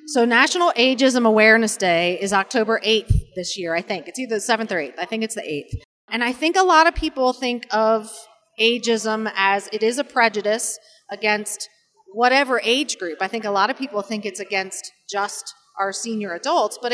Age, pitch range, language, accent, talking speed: 30-49, 205-255 Hz, English, American, 200 wpm